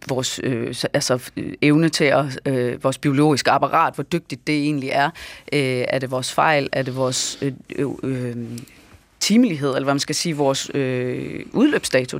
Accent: native